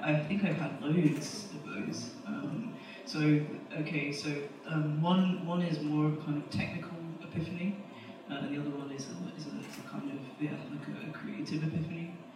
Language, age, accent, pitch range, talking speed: Russian, 20-39, British, 145-160 Hz, 180 wpm